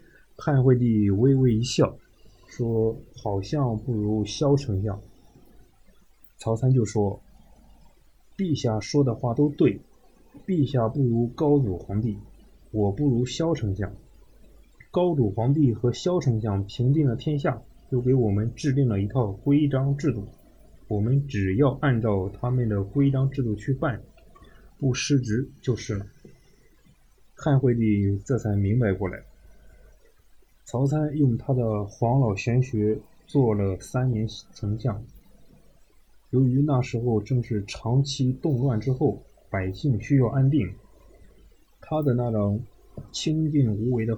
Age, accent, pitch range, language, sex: 20-39, native, 105-135 Hz, Chinese, male